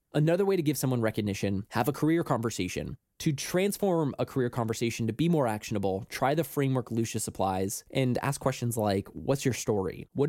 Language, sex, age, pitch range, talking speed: English, male, 20-39, 110-145 Hz, 185 wpm